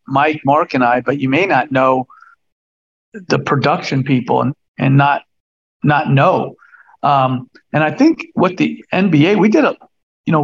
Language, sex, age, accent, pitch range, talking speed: English, male, 50-69, American, 135-180 Hz, 165 wpm